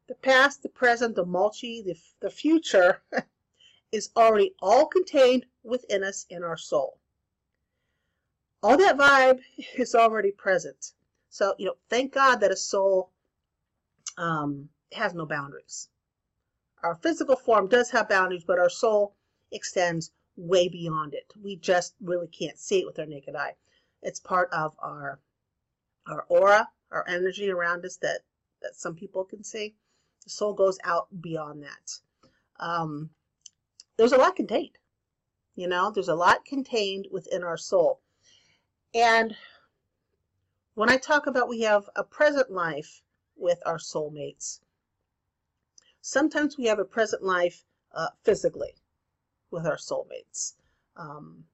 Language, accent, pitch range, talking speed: English, American, 170-245 Hz, 140 wpm